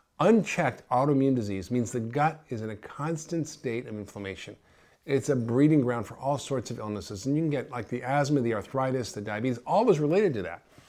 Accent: American